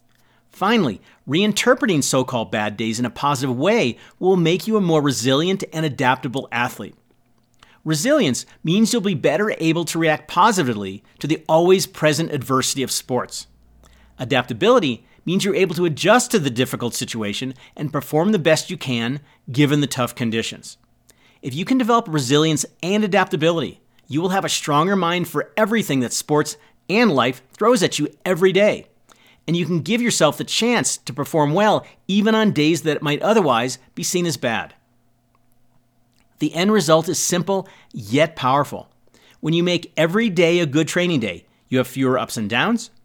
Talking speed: 165 wpm